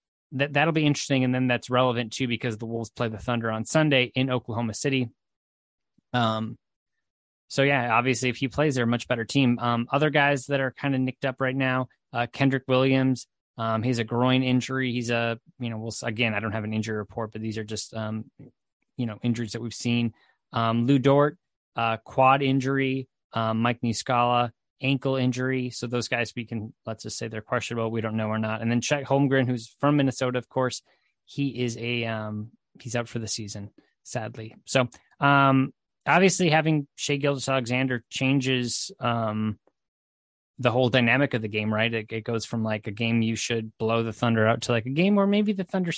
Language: English